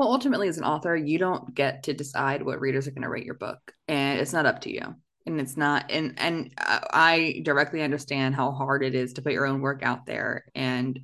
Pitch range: 135-160 Hz